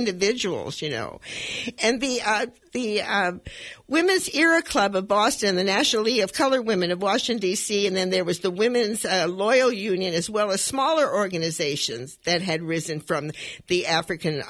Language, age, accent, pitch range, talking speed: English, 50-69, American, 170-235 Hz, 175 wpm